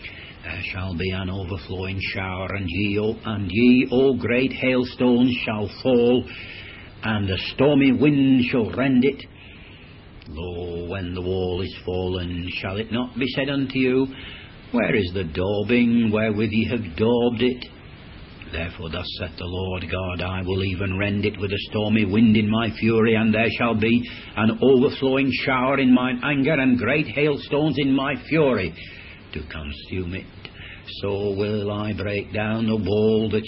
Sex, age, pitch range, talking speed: male, 60-79, 90-120 Hz, 160 wpm